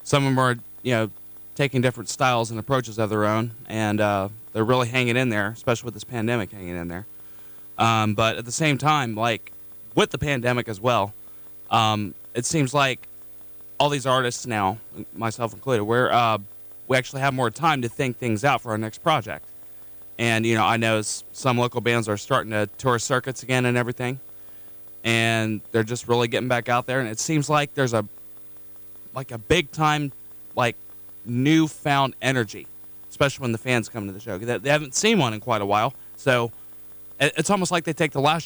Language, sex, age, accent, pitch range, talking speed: English, male, 20-39, American, 100-130 Hz, 190 wpm